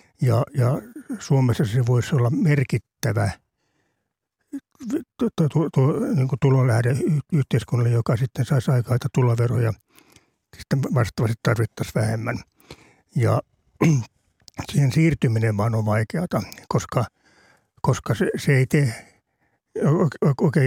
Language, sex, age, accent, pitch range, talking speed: Finnish, male, 60-79, native, 120-150 Hz, 100 wpm